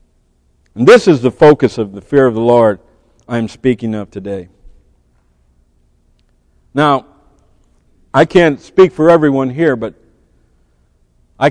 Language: English